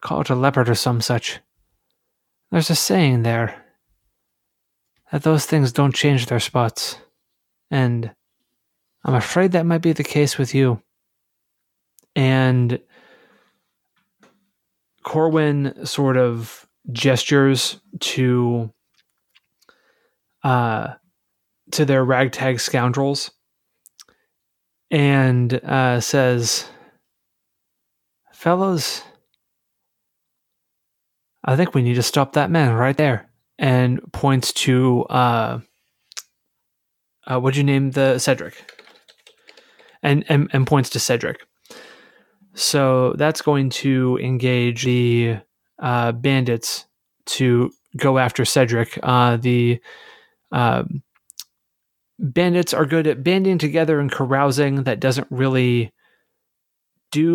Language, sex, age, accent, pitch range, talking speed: English, male, 20-39, American, 125-150 Hz, 100 wpm